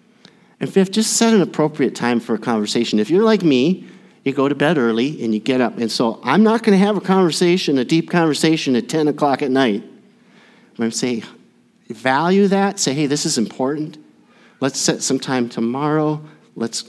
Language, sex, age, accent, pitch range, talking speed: English, male, 50-69, American, 125-195 Hz, 205 wpm